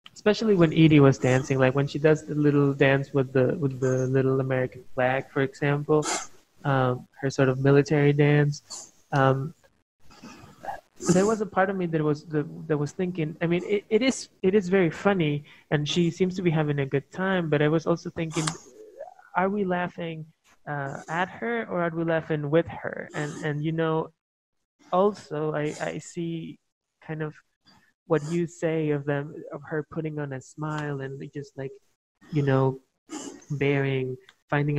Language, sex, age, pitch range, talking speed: English, male, 20-39, 140-170 Hz, 180 wpm